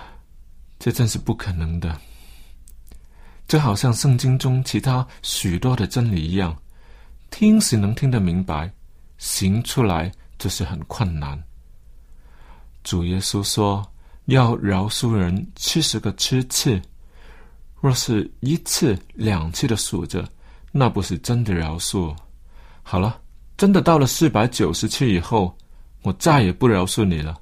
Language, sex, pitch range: Chinese, male, 85-125 Hz